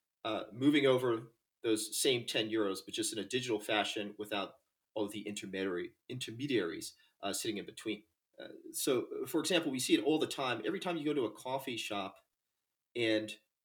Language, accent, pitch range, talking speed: English, American, 105-150 Hz, 185 wpm